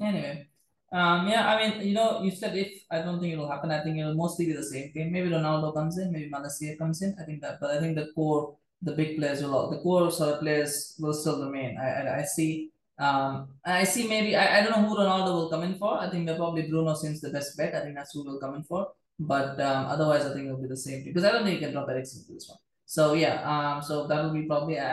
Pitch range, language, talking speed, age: 140-170 Hz, English, 280 wpm, 20-39